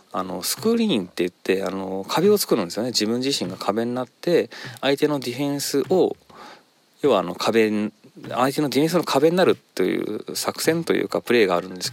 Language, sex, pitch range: Japanese, male, 105-155 Hz